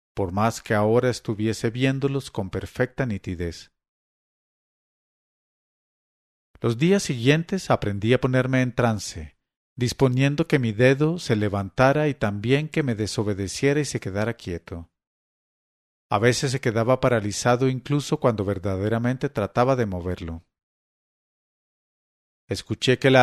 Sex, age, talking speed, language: male, 40-59, 120 wpm, English